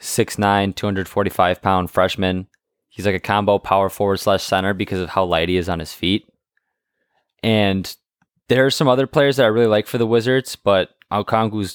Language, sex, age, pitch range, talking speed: English, male, 20-39, 90-105 Hz, 185 wpm